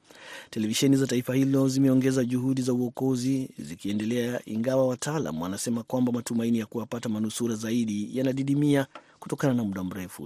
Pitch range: 115-135 Hz